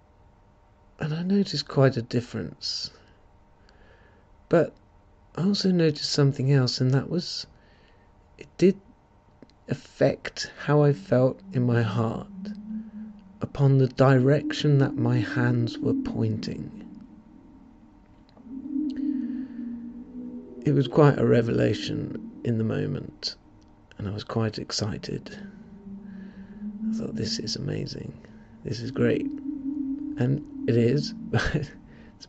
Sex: male